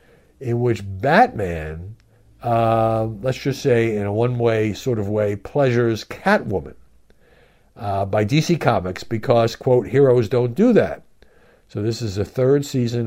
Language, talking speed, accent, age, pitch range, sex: English, 145 wpm, American, 60-79, 95-120 Hz, male